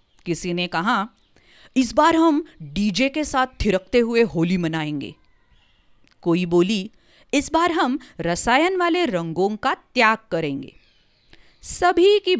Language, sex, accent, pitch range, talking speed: English, female, Indian, 180-300 Hz, 125 wpm